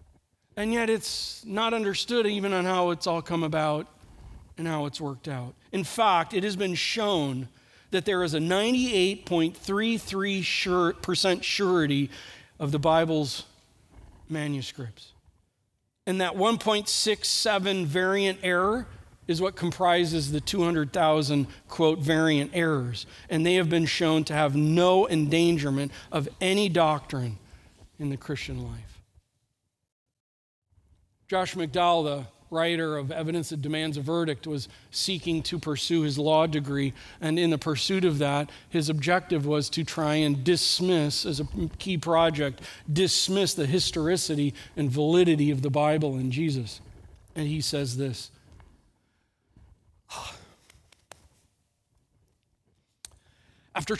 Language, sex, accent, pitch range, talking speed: English, male, American, 140-180 Hz, 125 wpm